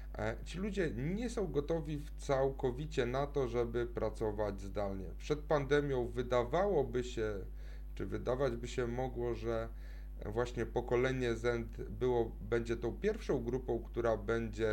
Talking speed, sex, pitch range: 125 wpm, male, 110-140 Hz